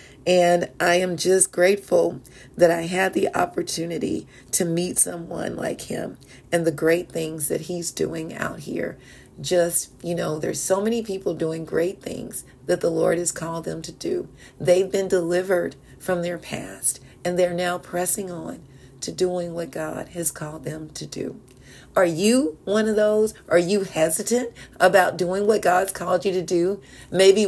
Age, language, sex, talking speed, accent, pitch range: 40-59, English, female, 175 wpm, American, 160-195 Hz